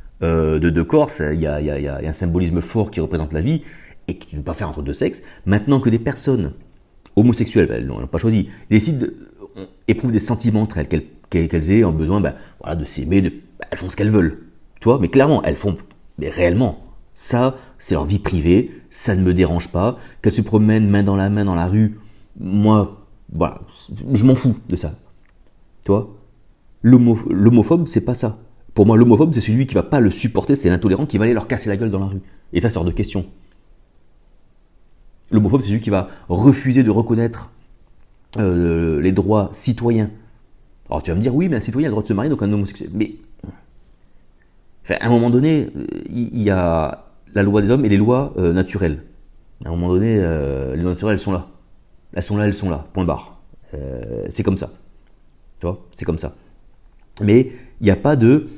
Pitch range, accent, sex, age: 85-115 Hz, French, male, 30-49